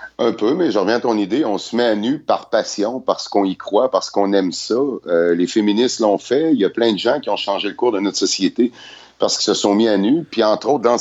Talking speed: 290 wpm